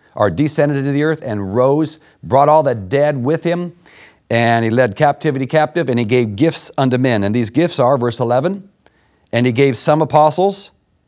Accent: American